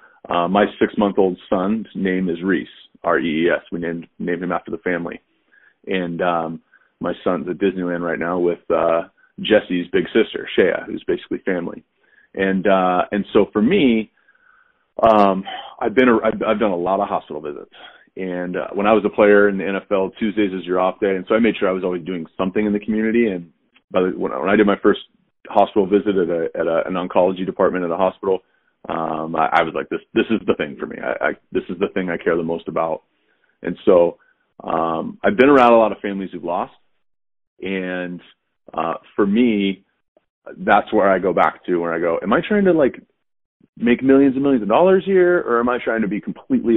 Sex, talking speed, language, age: male, 215 wpm, English, 30-49